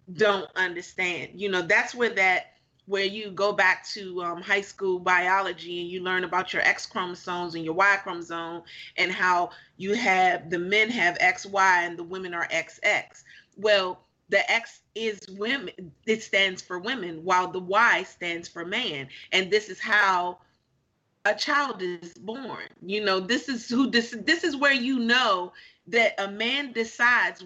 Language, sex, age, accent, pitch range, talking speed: English, female, 30-49, American, 180-235 Hz, 175 wpm